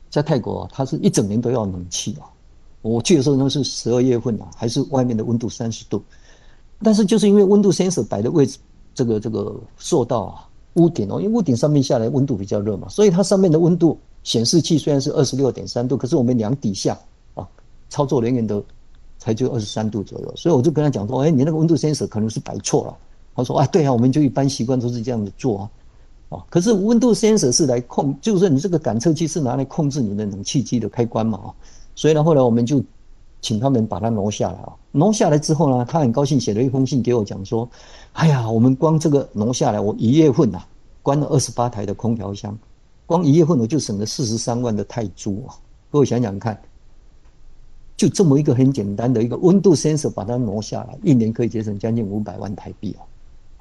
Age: 50-69